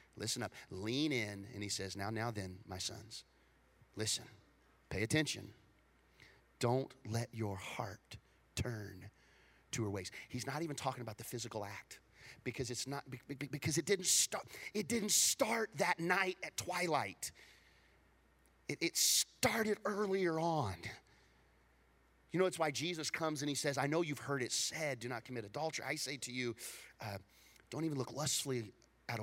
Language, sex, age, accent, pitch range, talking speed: English, male, 30-49, American, 110-165 Hz, 160 wpm